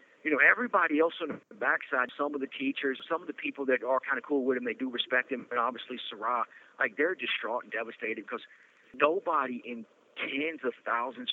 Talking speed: 210 wpm